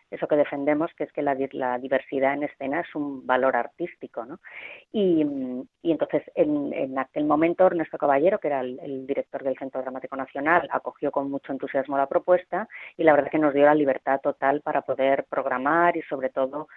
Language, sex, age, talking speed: Spanish, female, 30-49, 200 wpm